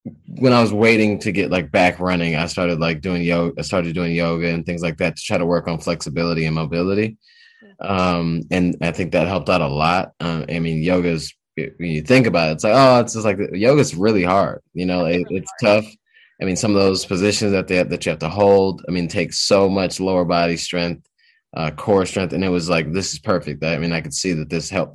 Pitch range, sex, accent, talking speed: 85-100 Hz, male, American, 250 wpm